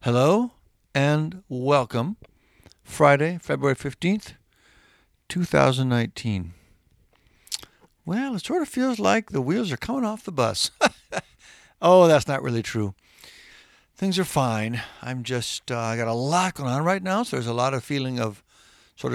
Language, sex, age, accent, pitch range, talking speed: English, male, 60-79, American, 115-165 Hz, 145 wpm